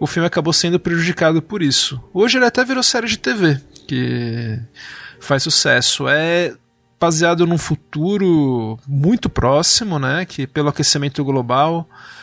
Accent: Brazilian